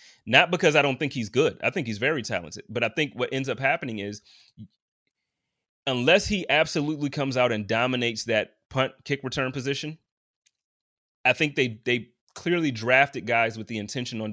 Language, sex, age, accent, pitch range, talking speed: English, male, 30-49, American, 110-140 Hz, 180 wpm